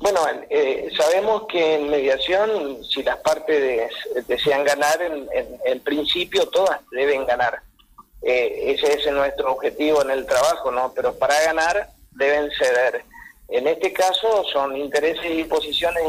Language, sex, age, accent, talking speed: Spanish, male, 40-59, Argentinian, 140 wpm